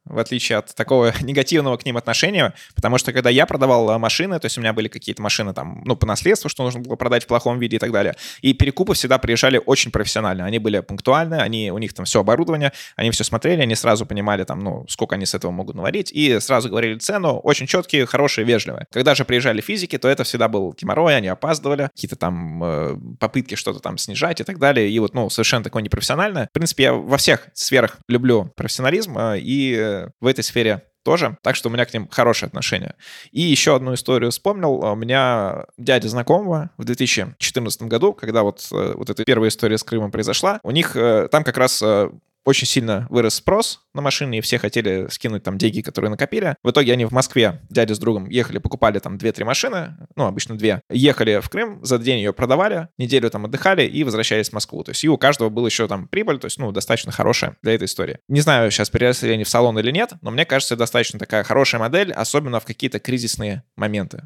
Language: Russian